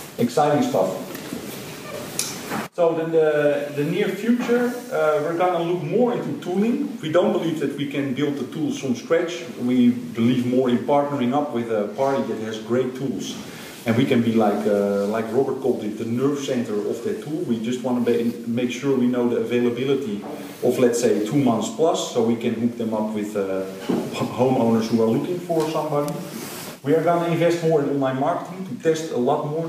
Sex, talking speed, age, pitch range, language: male, 200 wpm, 40-59, 120-160 Hz, Dutch